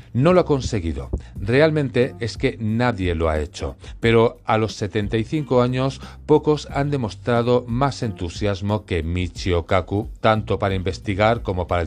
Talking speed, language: 145 wpm, Spanish